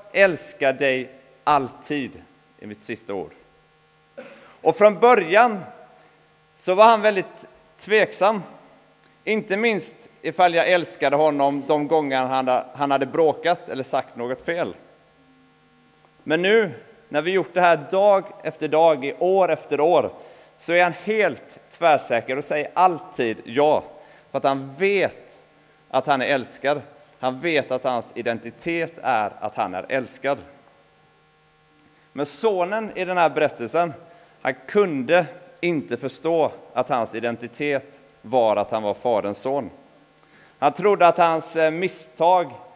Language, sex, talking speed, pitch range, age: Swedish, male, 135 wpm, 125-175 Hz, 30-49